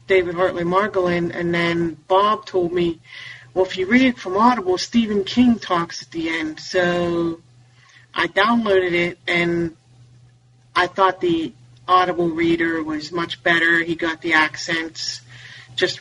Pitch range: 125-190 Hz